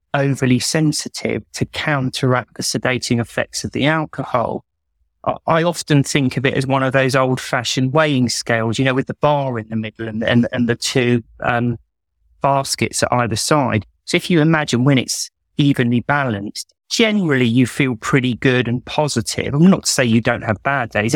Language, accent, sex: English, British, male